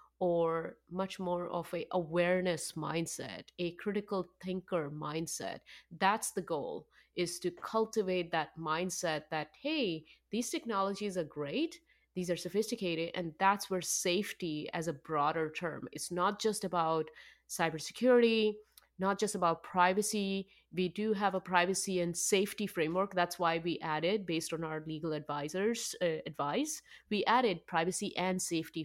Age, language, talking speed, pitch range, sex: 30-49, English, 145 wpm, 155-190 Hz, female